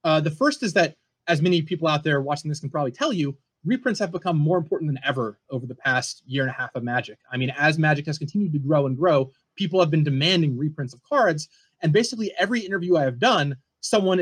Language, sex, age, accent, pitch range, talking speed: English, male, 20-39, American, 140-185 Hz, 240 wpm